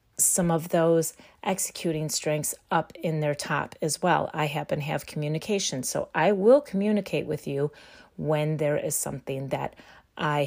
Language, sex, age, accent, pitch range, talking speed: English, female, 30-49, American, 150-200 Hz, 155 wpm